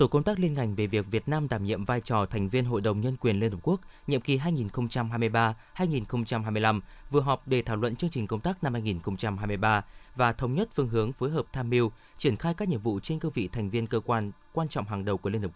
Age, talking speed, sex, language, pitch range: 20-39, 245 wpm, male, Vietnamese, 110-145 Hz